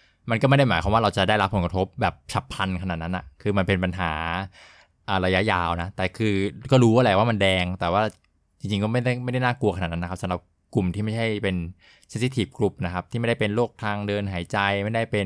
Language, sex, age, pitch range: Thai, male, 20-39, 90-115 Hz